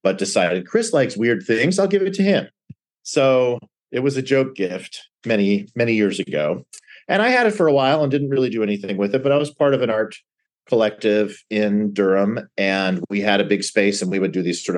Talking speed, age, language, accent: 230 wpm, 40-59, English, American